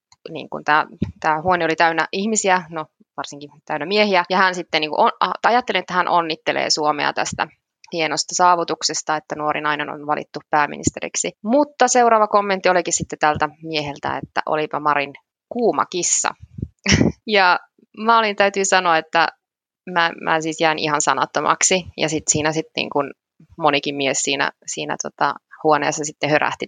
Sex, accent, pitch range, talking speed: female, native, 150-185 Hz, 150 wpm